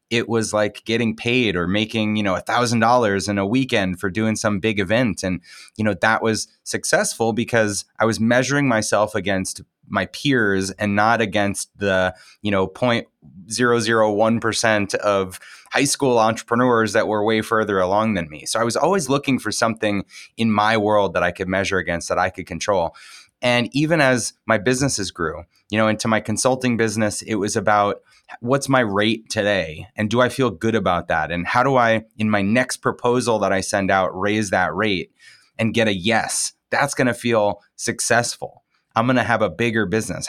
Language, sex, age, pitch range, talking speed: English, male, 20-39, 105-120 Hz, 195 wpm